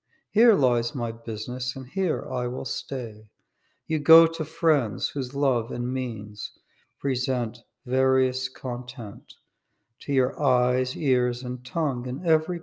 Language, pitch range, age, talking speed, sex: English, 125-150 Hz, 60-79, 135 wpm, male